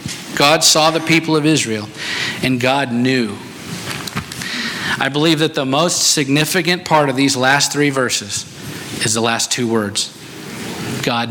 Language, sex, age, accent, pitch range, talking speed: English, male, 50-69, American, 120-150 Hz, 145 wpm